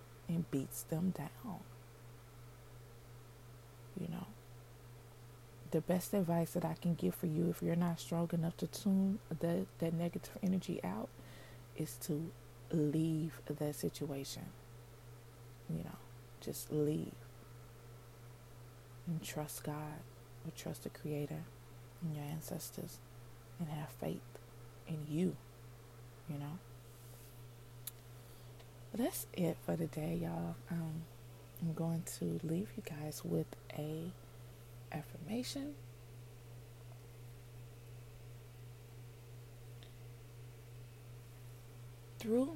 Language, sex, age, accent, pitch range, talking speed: English, female, 20-39, American, 120-165 Hz, 95 wpm